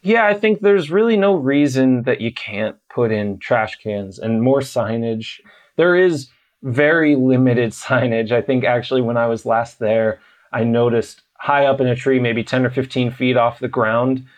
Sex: male